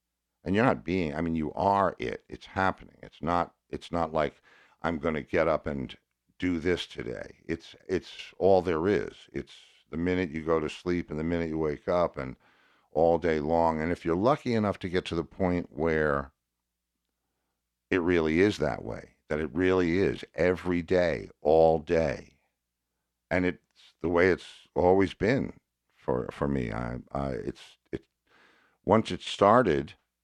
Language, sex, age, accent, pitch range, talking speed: English, male, 50-69, American, 65-85 Hz, 175 wpm